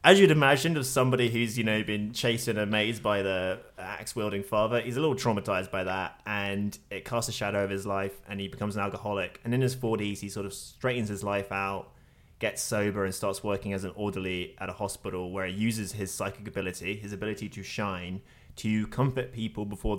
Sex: male